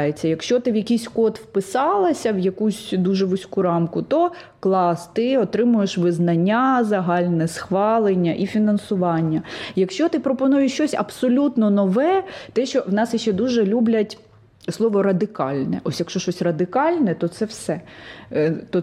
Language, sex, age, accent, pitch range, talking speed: Ukrainian, female, 20-39, native, 180-230 Hz, 135 wpm